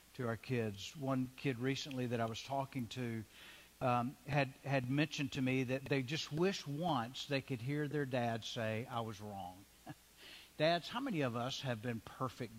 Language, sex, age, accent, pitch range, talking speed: English, male, 60-79, American, 105-155 Hz, 185 wpm